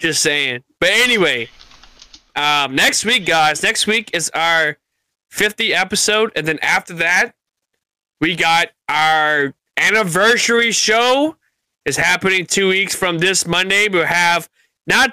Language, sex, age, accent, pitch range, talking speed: English, male, 20-39, American, 150-220 Hz, 130 wpm